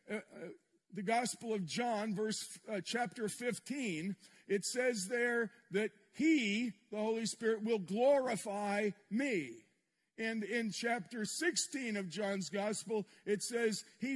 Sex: male